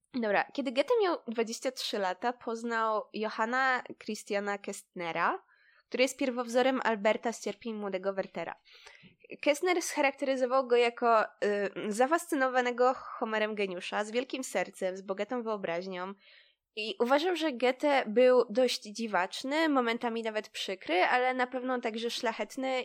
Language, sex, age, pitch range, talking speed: Polish, female, 20-39, 205-265 Hz, 120 wpm